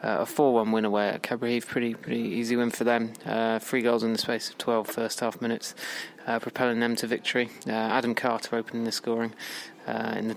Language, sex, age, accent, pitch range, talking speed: English, male, 20-39, British, 115-130 Hz, 225 wpm